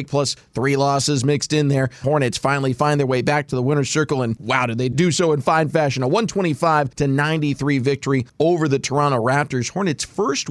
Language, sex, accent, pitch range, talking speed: English, male, American, 130-165 Hz, 195 wpm